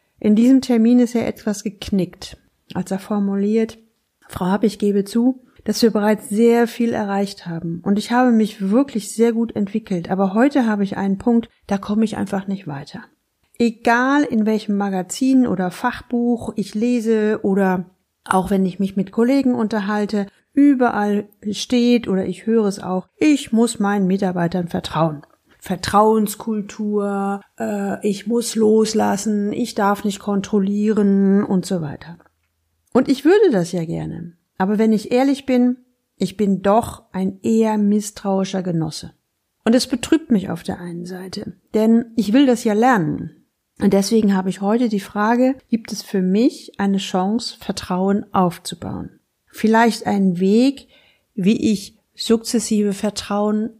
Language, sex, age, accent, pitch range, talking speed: German, female, 40-59, German, 195-230 Hz, 150 wpm